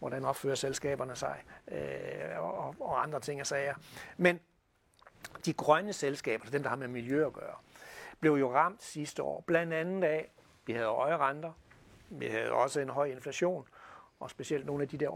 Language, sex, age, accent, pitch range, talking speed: Danish, male, 60-79, native, 145-185 Hz, 180 wpm